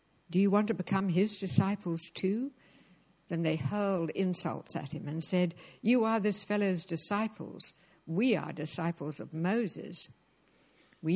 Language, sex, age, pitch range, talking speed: English, female, 60-79, 165-205 Hz, 145 wpm